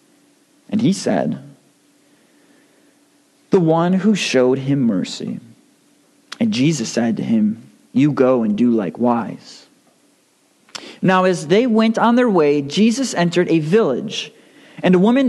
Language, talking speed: English, 130 wpm